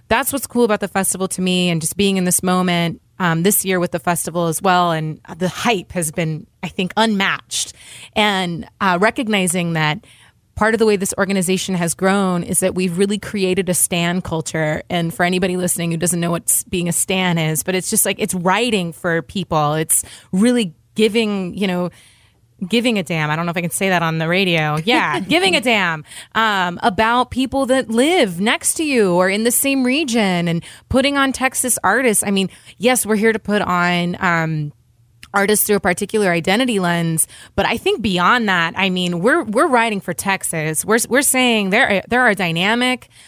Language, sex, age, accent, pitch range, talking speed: English, female, 20-39, American, 175-220 Hz, 200 wpm